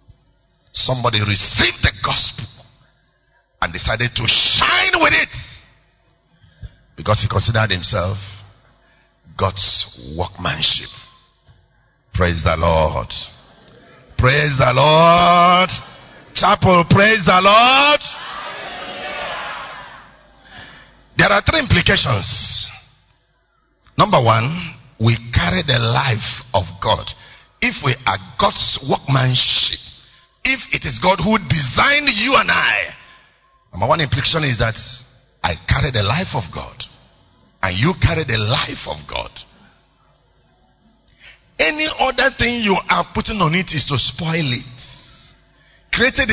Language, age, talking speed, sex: English, 50-69, 110 wpm, male